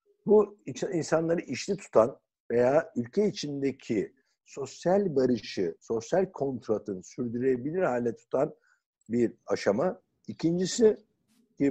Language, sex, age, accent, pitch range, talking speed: Turkish, male, 60-79, native, 120-170 Hz, 90 wpm